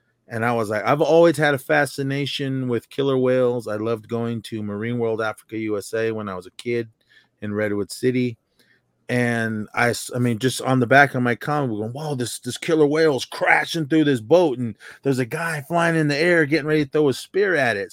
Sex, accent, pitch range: male, American, 115-145 Hz